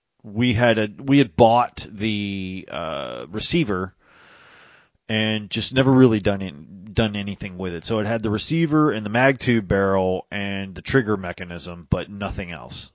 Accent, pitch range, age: American, 95-130 Hz, 30-49